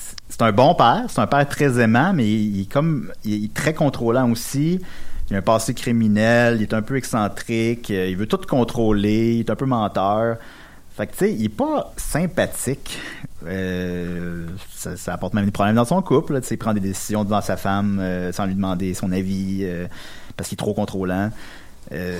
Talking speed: 215 wpm